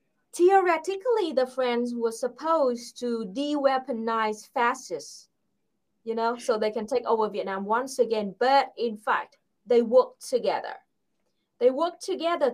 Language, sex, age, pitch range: English, female, 20-39, 210-280 Hz